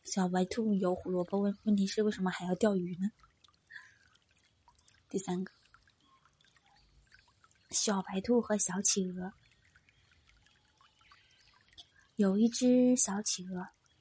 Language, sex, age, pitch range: Chinese, female, 20-39, 180-230 Hz